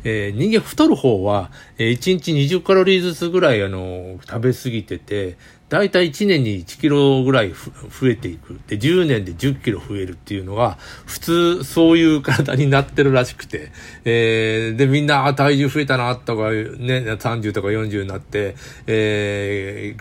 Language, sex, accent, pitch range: Japanese, male, native, 105-140 Hz